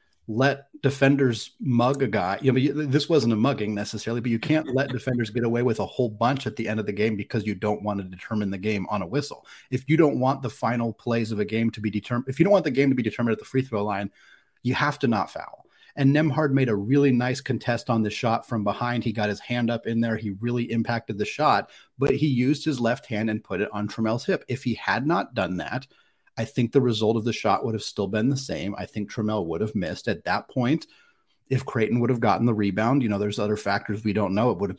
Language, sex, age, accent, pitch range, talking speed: English, male, 30-49, American, 105-125 Hz, 260 wpm